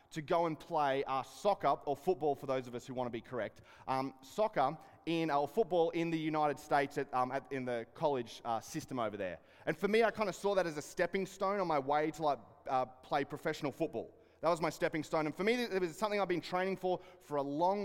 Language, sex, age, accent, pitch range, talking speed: English, male, 20-39, Australian, 140-175 Hz, 260 wpm